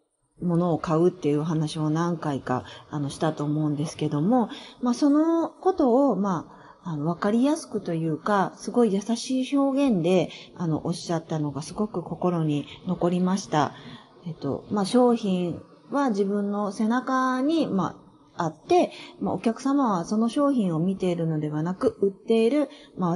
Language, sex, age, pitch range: Japanese, female, 30-49, 160-255 Hz